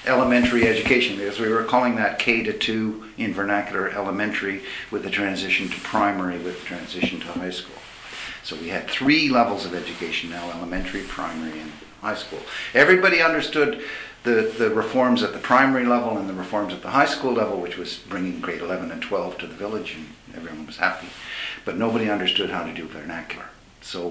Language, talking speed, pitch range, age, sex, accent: English, 190 wpm, 90-115 Hz, 60-79, male, American